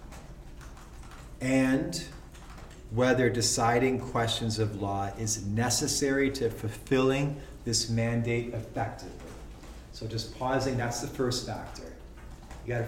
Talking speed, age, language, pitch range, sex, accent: 100 wpm, 30-49, English, 105-130 Hz, male, American